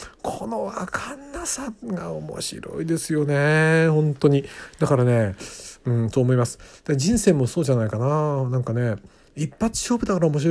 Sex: male